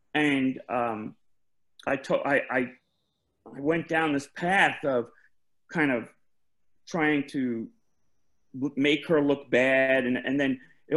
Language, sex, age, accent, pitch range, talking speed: English, male, 40-59, American, 130-165 Hz, 125 wpm